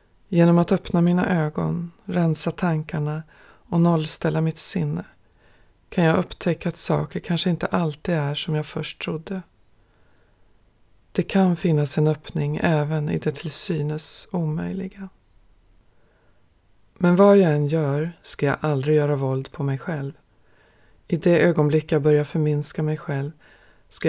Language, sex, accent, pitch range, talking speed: English, female, Swedish, 140-170 Hz, 140 wpm